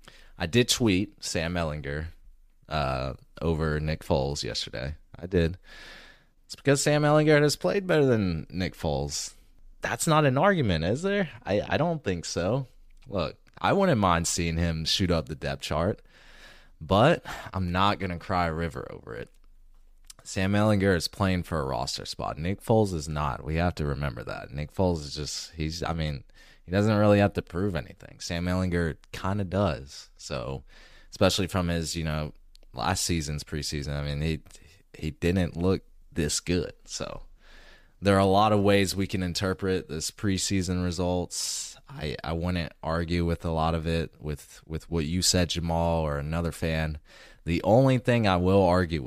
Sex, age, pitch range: male, 20-39, 80-100 Hz